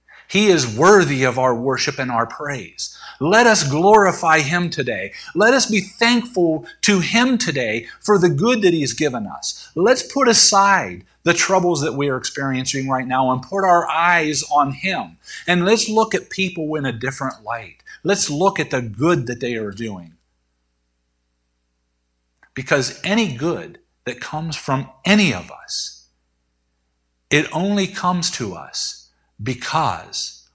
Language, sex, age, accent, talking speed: English, male, 50-69, American, 155 wpm